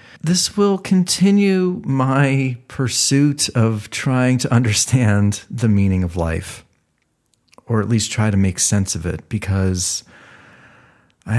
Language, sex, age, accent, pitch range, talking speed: English, male, 40-59, American, 100-130 Hz, 125 wpm